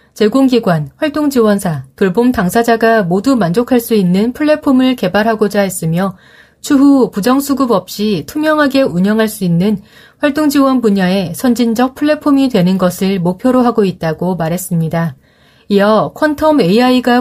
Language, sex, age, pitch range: Korean, female, 30-49, 190-250 Hz